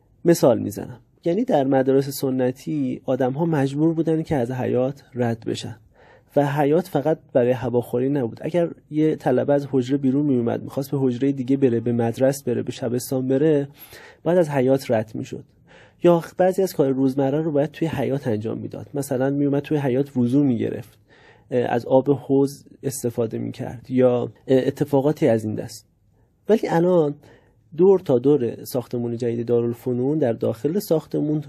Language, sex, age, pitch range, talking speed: Persian, male, 30-49, 120-150 Hz, 155 wpm